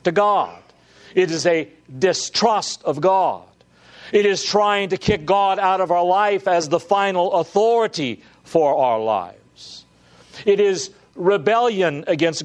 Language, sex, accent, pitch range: English, male, American, 115-195 Hz